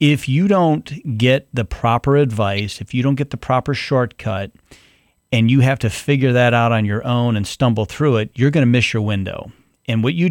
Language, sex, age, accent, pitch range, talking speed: English, male, 40-59, American, 115-135 Hz, 215 wpm